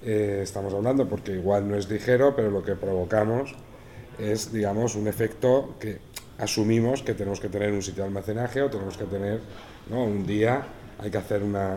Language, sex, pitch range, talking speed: Spanish, male, 100-120 Hz, 190 wpm